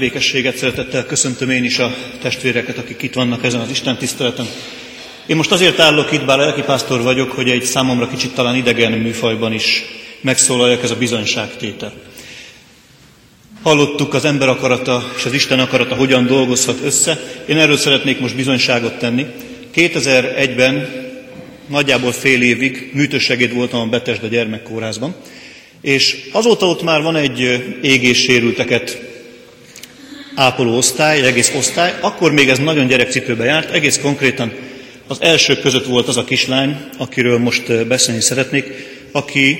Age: 40-59